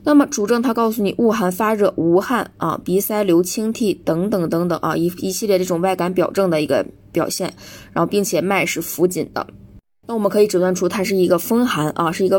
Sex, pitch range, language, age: female, 165-200 Hz, Chinese, 20-39